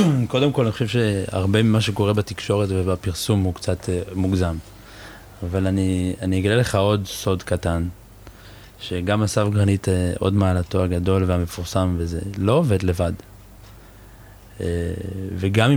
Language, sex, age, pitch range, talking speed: Hebrew, male, 20-39, 95-105 Hz, 120 wpm